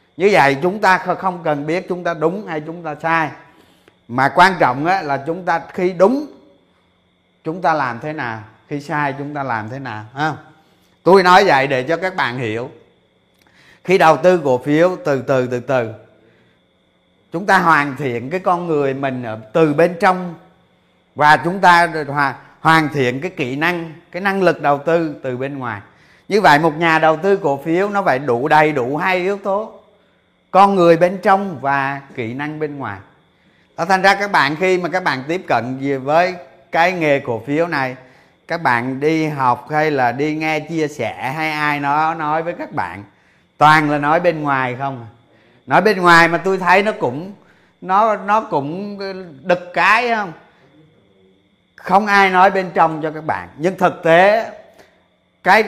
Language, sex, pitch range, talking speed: Vietnamese, male, 140-180 Hz, 180 wpm